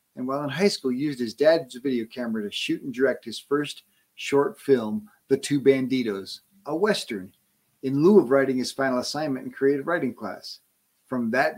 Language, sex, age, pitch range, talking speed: English, male, 40-59, 130-170 Hz, 190 wpm